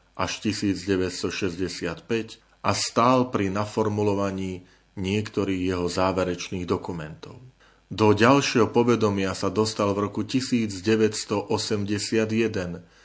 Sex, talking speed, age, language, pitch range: male, 85 wpm, 30-49, Slovak, 100-115 Hz